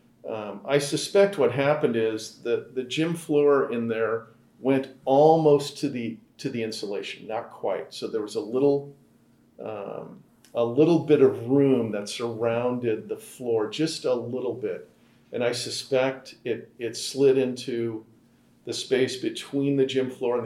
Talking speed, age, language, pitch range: 160 wpm, 40-59, English, 115-150 Hz